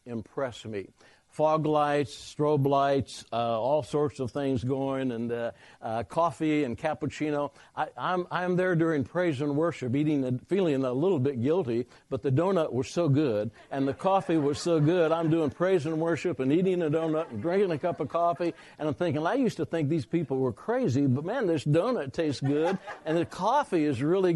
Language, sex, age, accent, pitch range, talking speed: English, male, 60-79, American, 135-170 Hz, 200 wpm